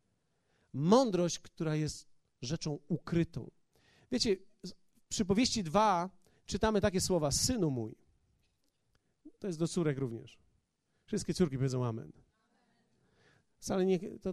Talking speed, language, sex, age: 110 wpm, Polish, male, 40-59